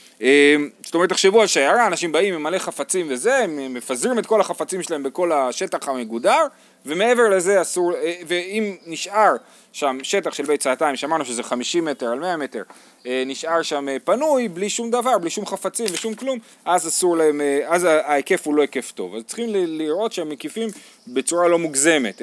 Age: 30-49